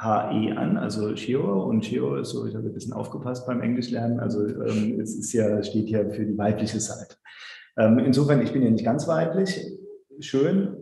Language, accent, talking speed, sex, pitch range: German, German, 195 wpm, male, 110-135 Hz